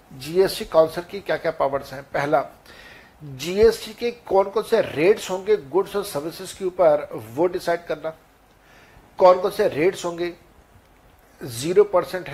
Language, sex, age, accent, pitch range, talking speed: Hindi, male, 60-79, native, 160-210 Hz, 145 wpm